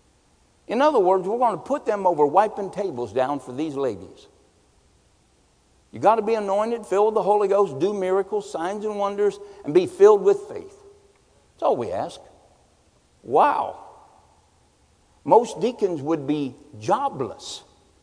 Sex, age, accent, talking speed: male, 60-79, American, 150 wpm